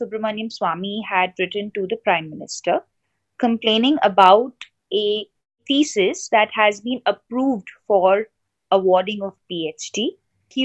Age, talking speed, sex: 20-39, 120 wpm, female